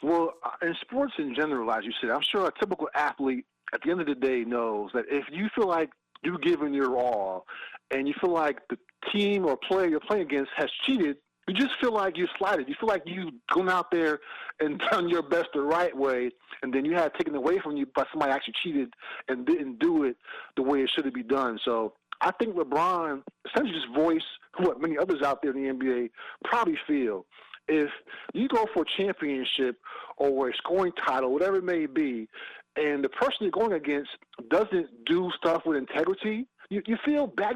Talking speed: 210 wpm